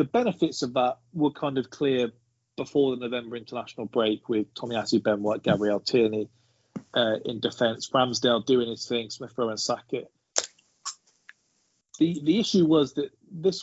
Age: 30-49